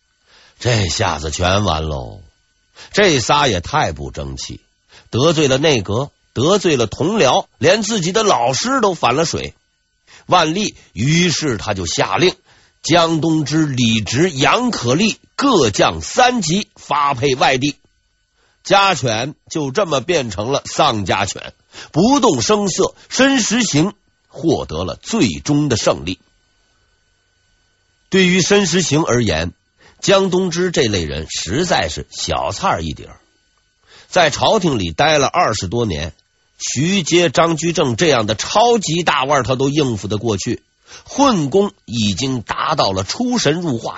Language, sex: Chinese, male